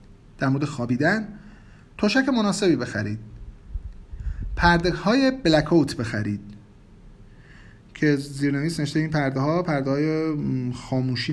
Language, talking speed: Persian, 100 wpm